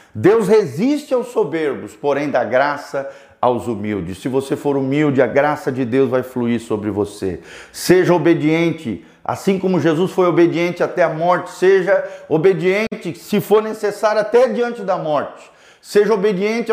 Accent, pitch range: Brazilian, 135-190 Hz